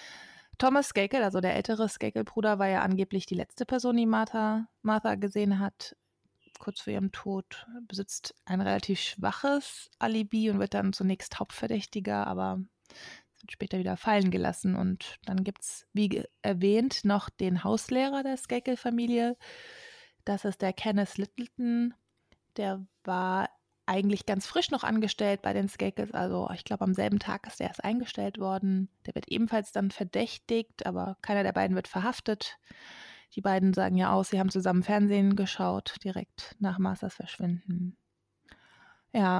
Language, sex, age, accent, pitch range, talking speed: German, female, 20-39, German, 190-220 Hz, 155 wpm